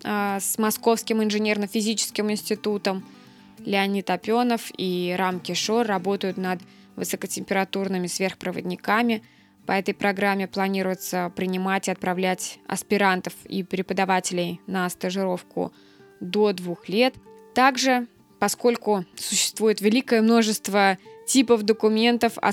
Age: 20-39